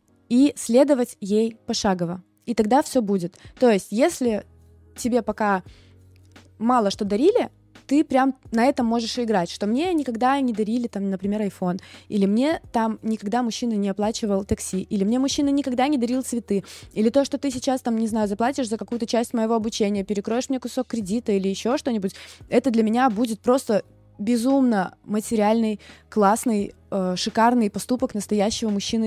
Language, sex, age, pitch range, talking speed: Russian, female, 20-39, 195-255 Hz, 165 wpm